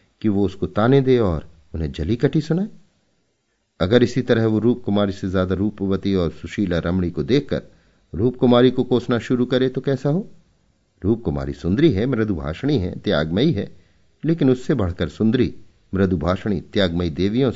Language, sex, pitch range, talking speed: Hindi, male, 80-115 Hz, 160 wpm